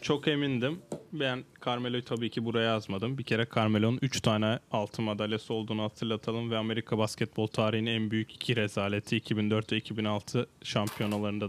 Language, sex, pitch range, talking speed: Turkish, male, 110-130 Hz, 150 wpm